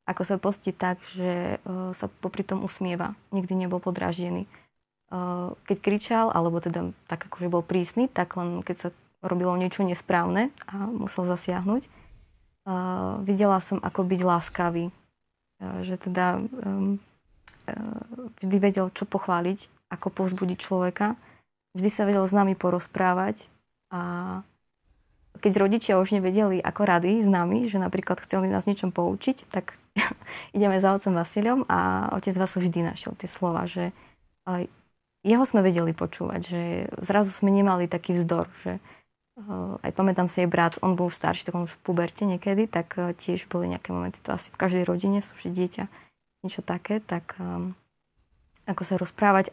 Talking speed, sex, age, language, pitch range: 150 wpm, female, 20-39, Slovak, 175-200 Hz